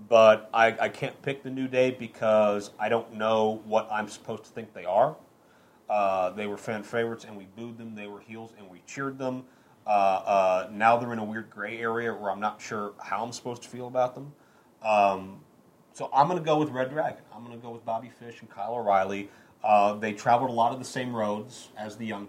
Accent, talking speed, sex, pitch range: American, 230 wpm, male, 105-115 Hz